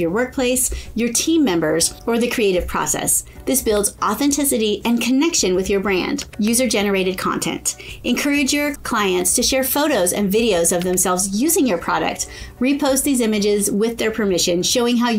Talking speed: 160 wpm